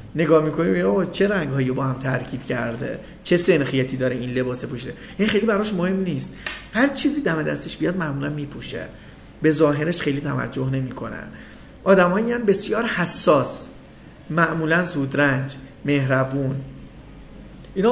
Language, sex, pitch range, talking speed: Persian, male, 130-175 Hz, 135 wpm